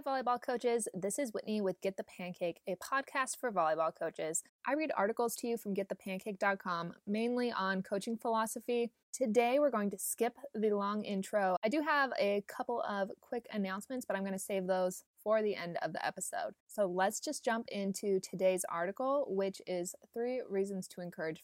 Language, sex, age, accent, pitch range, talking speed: English, female, 20-39, American, 195-255 Hz, 185 wpm